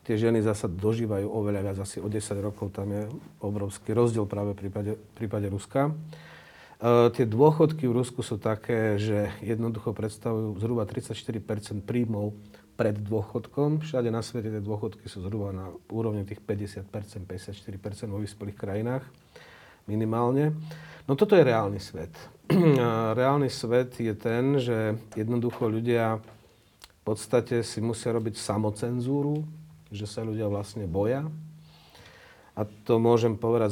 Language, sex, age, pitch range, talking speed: Slovak, male, 40-59, 105-120 Hz, 140 wpm